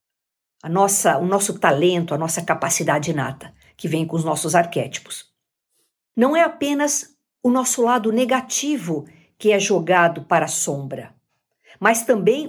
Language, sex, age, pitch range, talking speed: Portuguese, female, 50-69, 185-285 Hz, 145 wpm